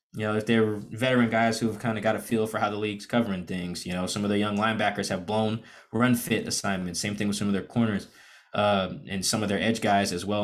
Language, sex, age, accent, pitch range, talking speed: English, male, 20-39, American, 105-120 Hz, 270 wpm